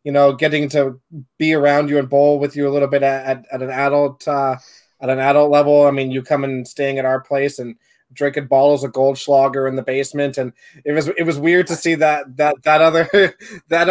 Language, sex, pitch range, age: English, male, 130-150 Hz, 20-39